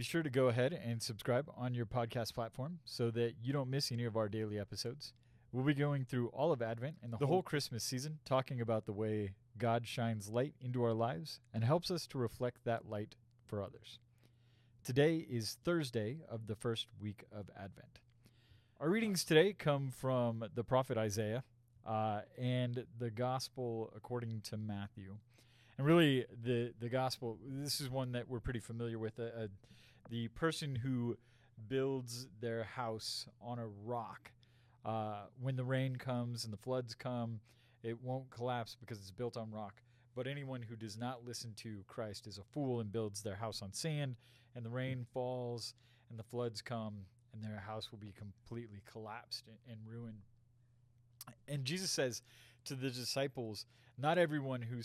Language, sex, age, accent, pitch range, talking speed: English, male, 30-49, American, 115-130 Hz, 175 wpm